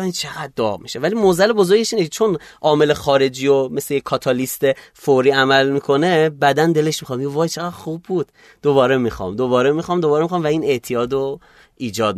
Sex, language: male, Persian